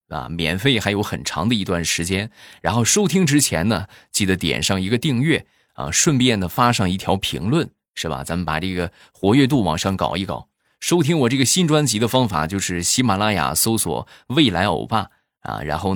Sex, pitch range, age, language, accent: male, 85-120 Hz, 20-39, Chinese, native